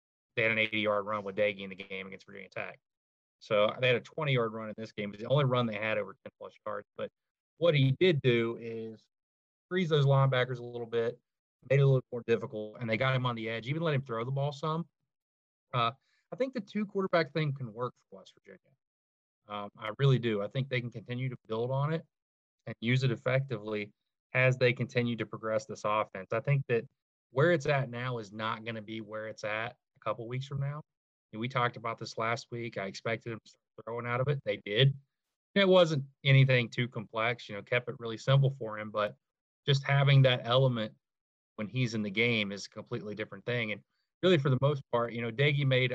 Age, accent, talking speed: 20-39, American, 230 wpm